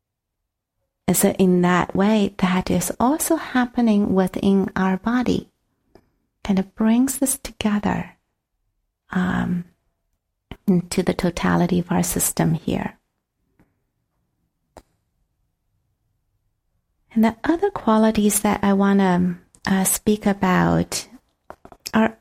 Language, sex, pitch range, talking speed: English, female, 130-210 Hz, 100 wpm